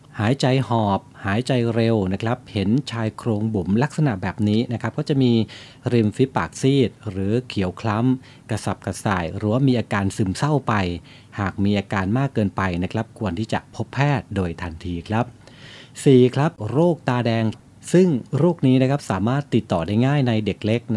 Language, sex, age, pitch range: Thai, male, 30-49, 100-125 Hz